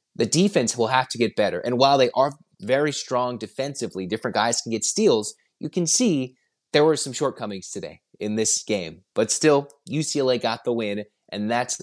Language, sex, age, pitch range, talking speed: English, male, 30-49, 110-145 Hz, 195 wpm